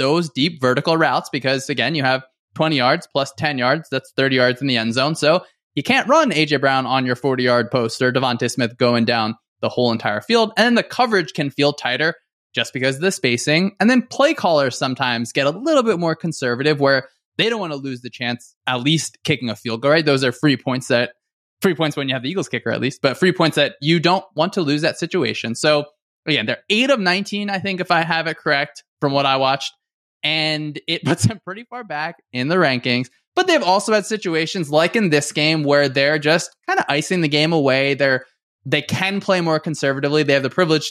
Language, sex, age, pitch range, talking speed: English, male, 20-39, 135-180 Hz, 235 wpm